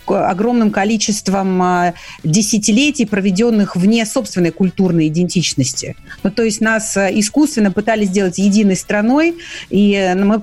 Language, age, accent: Russian, 40-59, native